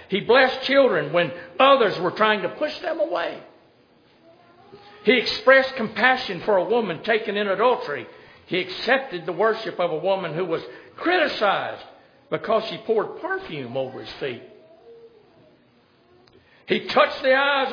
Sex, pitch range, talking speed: male, 175-255 Hz, 140 wpm